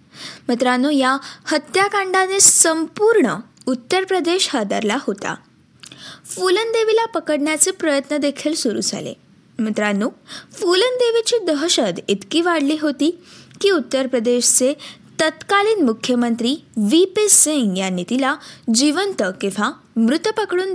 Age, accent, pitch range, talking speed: 20-39, native, 235-345 Hz, 80 wpm